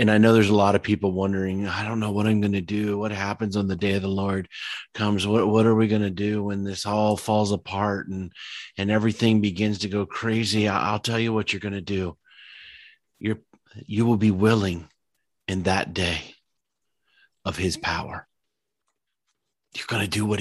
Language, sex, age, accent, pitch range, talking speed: English, male, 30-49, American, 95-110 Hz, 205 wpm